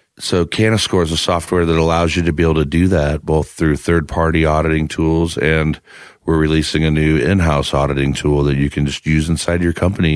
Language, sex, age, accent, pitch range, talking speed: English, male, 40-59, American, 75-90 Hz, 215 wpm